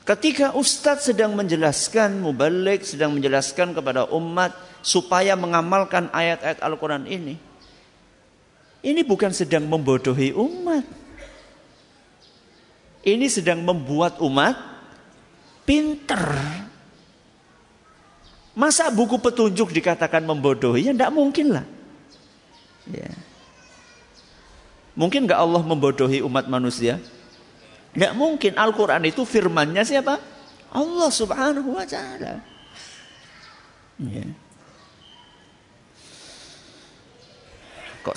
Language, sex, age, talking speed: Malay, male, 50-69, 80 wpm